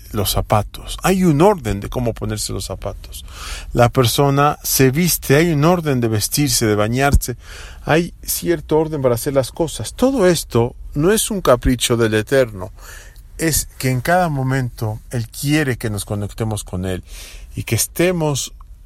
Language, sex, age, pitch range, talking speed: English, male, 40-59, 100-130 Hz, 160 wpm